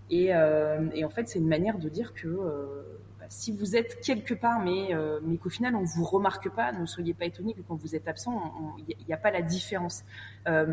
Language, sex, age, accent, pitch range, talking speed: French, female, 20-39, French, 155-195 Hz, 250 wpm